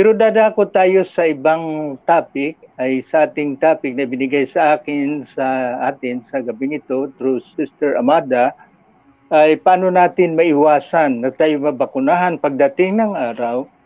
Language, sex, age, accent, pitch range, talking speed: English, male, 50-69, Filipino, 140-185 Hz, 140 wpm